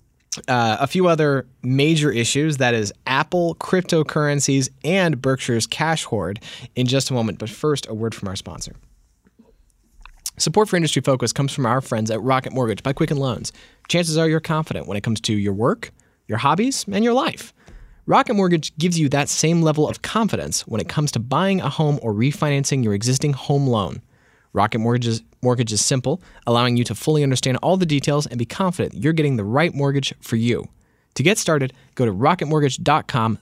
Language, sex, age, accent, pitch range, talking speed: English, male, 20-39, American, 115-150 Hz, 190 wpm